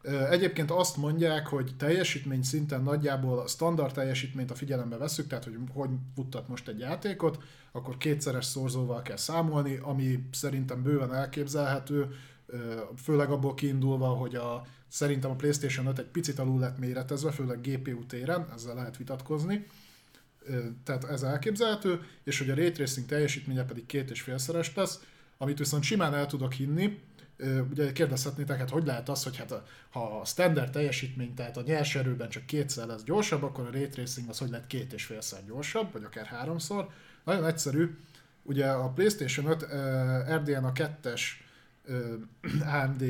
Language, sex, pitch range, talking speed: Hungarian, male, 130-150 Hz, 155 wpm